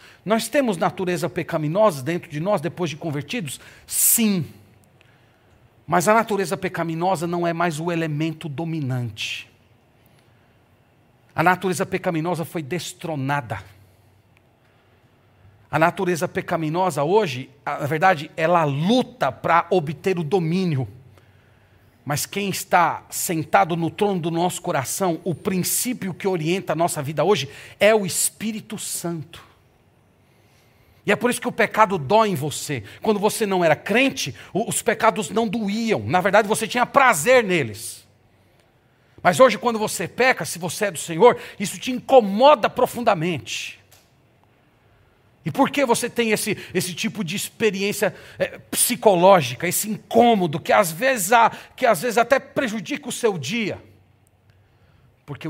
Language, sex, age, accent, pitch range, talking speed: Portuguese, male, 40-59, Brazilian, 125-200 Hz, 130 wpm